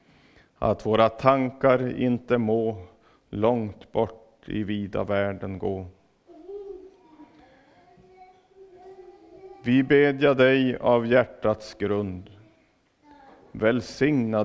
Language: Swedish